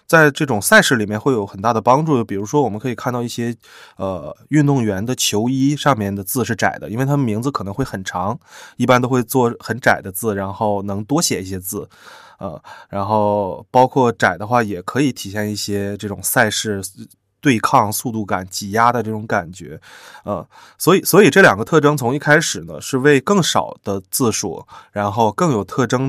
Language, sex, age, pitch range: Chinese, male, 20-39, 100-135 Hz